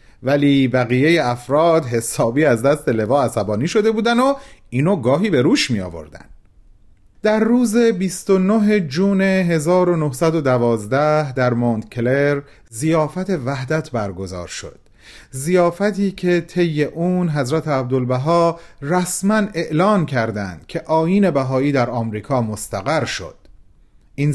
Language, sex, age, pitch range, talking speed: Persian, male, 40-59, 120-180 Hz, 115 wpm